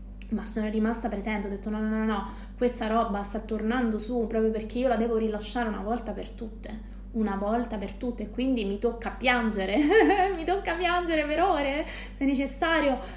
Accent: native